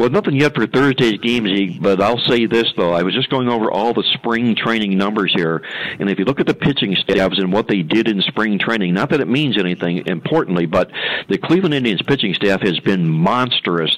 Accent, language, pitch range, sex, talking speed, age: American, English, 95-125 Hz, male, 225 wpm, 60-79